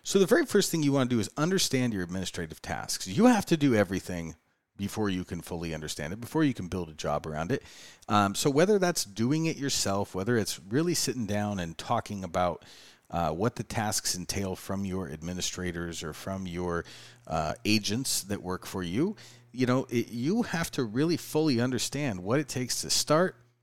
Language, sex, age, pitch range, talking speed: English, male, 40-59, 95-145 Hz, 200 wpm